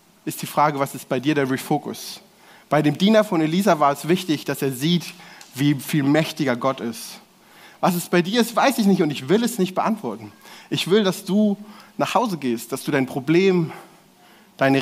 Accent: German